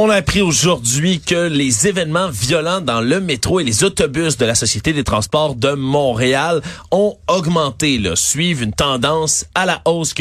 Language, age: French, 30-49